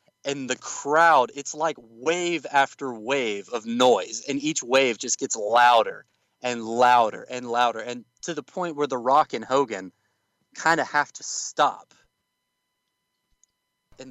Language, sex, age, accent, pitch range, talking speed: English, male, 30-49, American, 120-150 Hz, 145 wpm